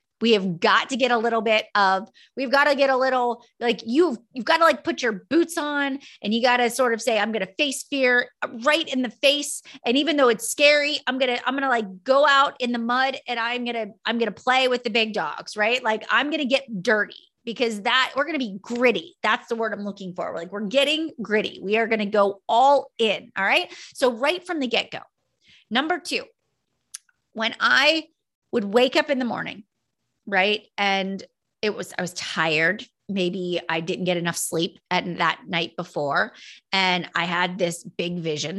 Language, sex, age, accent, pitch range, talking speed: English, female, 30-49, American, 195-260 Hz, 220 wpm